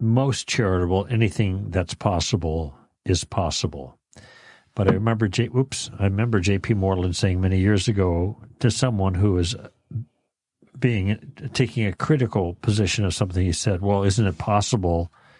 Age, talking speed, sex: 60-79, 145 wpm, male